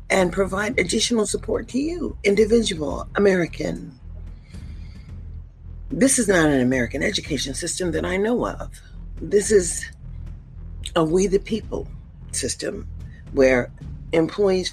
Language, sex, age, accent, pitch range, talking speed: English, female, 50-69, American, 120-195 Hz, 115 wpm